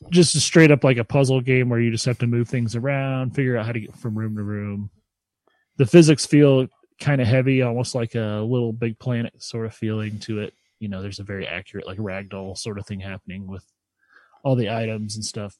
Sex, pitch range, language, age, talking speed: male, 105-140 Hz, English, 30-49, 230 wpm